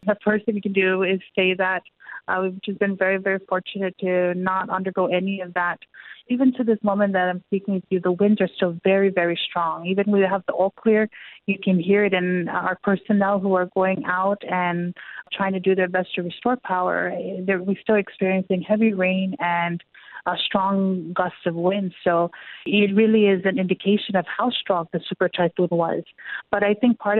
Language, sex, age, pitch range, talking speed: English, female, 30-49, 185-200 Hz, 205 wpm